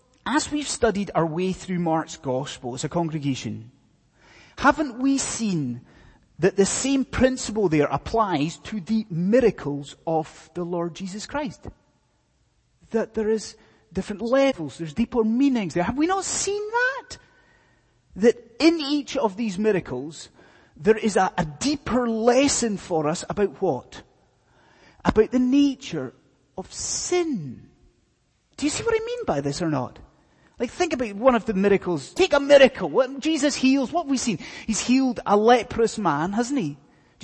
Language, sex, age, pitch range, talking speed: English, male, 30-49, 180-275 Hz, 155 wpm